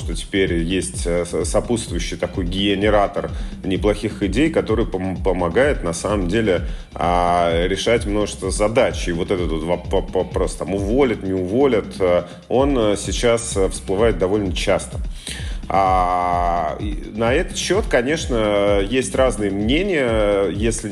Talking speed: 105 wpm